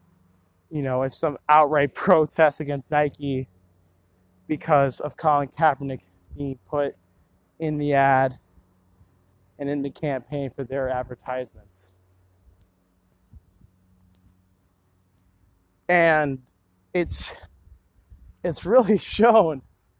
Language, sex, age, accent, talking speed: English, male, 20-39, American, 85 wpm